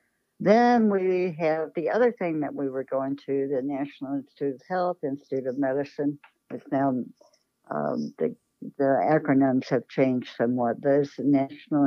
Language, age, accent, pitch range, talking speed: English, 60-79, American, 130-160 Hz, 155 wpm